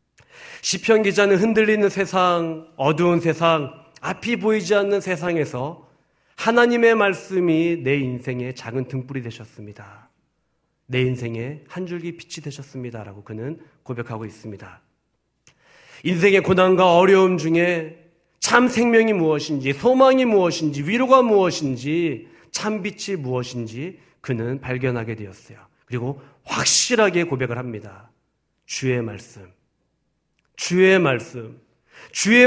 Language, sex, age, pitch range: Korean, male, 40-59, 125-200 Hz